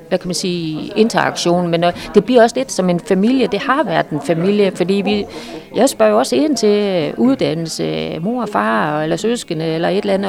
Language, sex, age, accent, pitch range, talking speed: Danish, female, 40-59, native, 170-220 Hz, 210 wpm